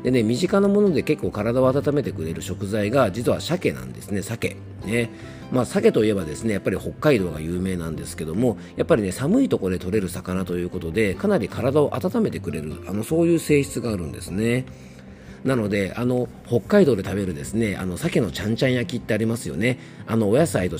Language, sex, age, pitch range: Japanese, male, 40-59, 85-120 Hz